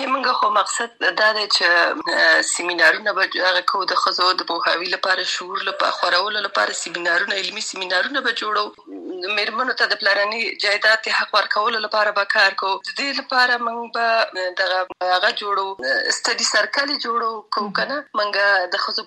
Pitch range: 195-230 Hz